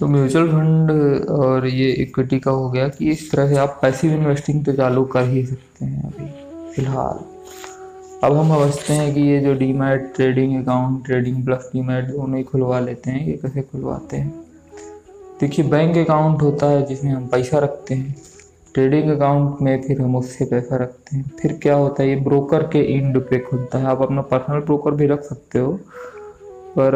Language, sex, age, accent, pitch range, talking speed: Hindi, male, 20-39, native, 130-150 Hz, 190 wpm